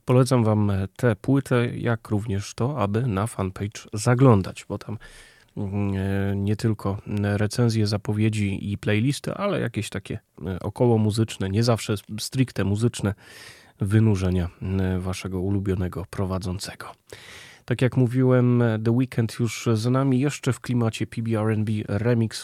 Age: 30-49